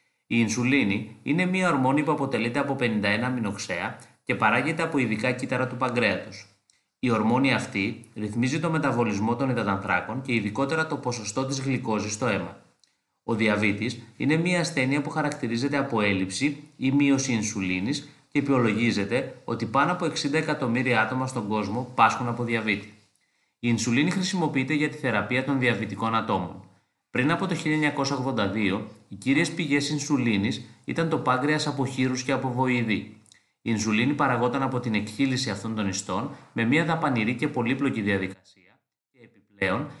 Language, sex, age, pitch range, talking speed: Greek, male, 30-49, 110-145 Hz, 170 wpm